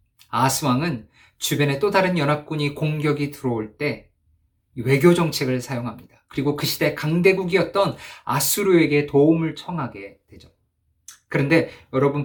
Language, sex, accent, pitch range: Korean, male, native, 110-155 Hz